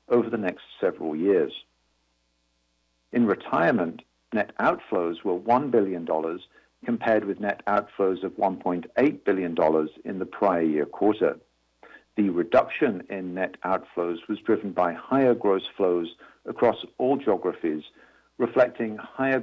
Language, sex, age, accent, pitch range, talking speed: English, male, 50-69, British, 80-115 Hz, 125 wpm